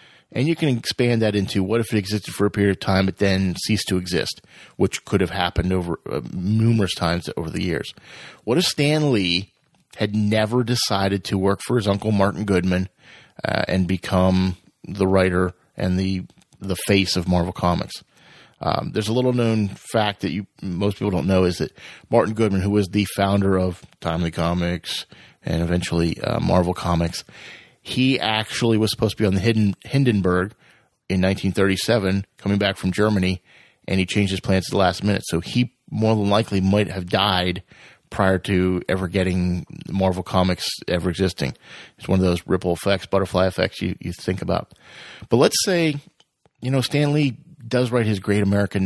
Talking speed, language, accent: 185 wpm, English, American